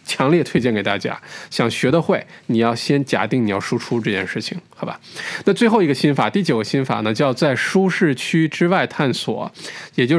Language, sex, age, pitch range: Chinese, male, 20-39, 125-175 Hz